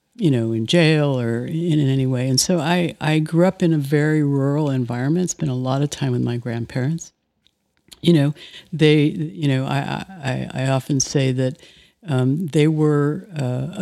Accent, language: American, English